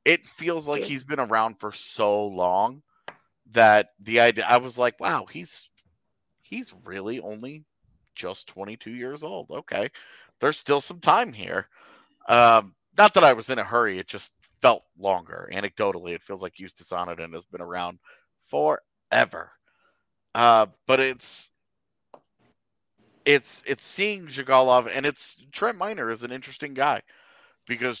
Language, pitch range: English, 100-135 Hz